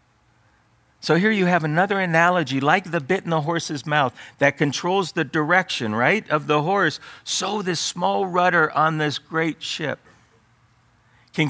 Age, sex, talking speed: 50-69, male, 155 wpm